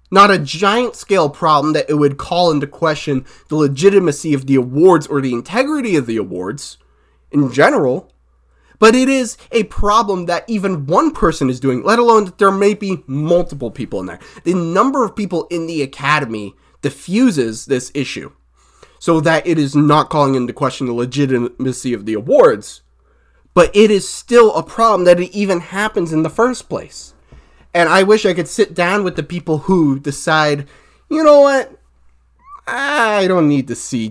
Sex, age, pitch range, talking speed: male, 20-39, 130-200 Hz, 180 wpm